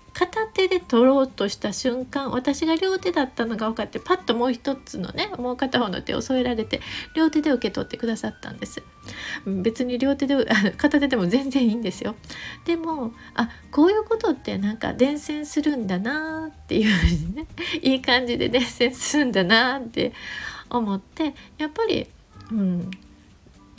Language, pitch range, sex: Japanese, 220-310 Hz, female